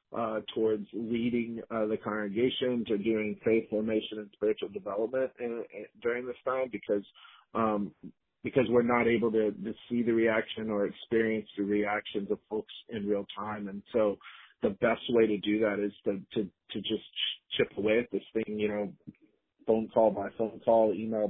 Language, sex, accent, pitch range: English, male, American, 105-115 Hz